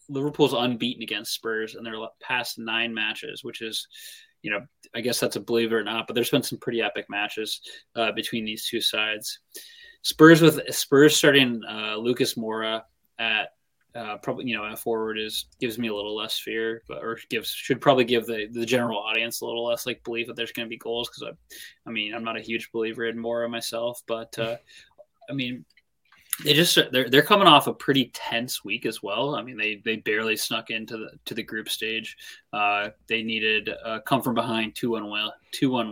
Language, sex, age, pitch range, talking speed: English, male, 20-39, 110-125 Hz, 210 wpm